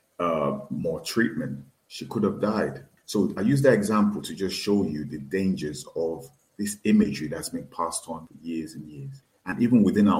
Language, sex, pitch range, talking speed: English, male, 85-110 Hz, 195 wpm